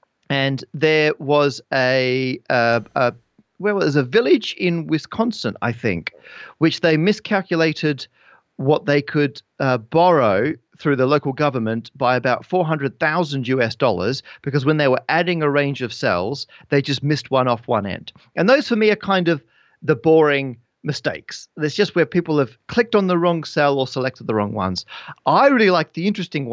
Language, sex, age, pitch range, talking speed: English, male, 40-59, 130-185 Hz, 180 wpm